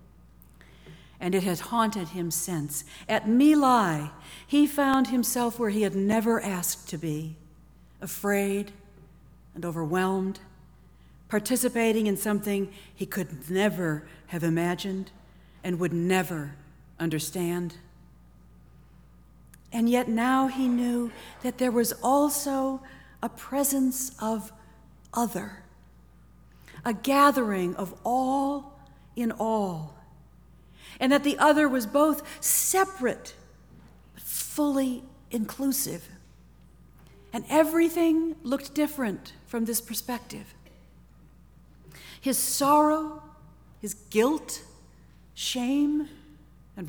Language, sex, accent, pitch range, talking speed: English, female, American, 165-260 Hz, 95 wpm